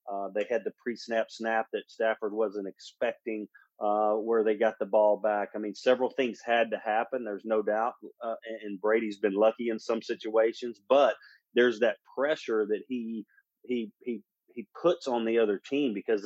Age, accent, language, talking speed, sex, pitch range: 30-49, American, English, 190 wpm, male, 110-140 Hz